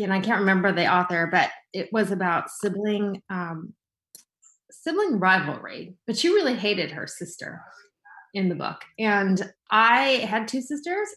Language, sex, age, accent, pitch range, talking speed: English, female, 30-49, American, 185-250 Hz, 150 wpm